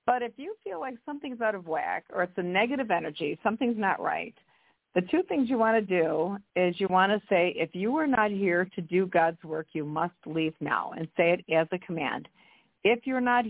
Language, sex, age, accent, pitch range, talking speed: English, female, 50-69, American, 170-215 Hz, 225 wpm